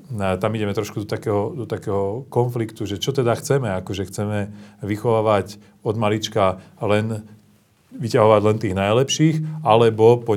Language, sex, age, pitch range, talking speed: Slovak, male, 30-49, 100-115 Hz, 150 wpm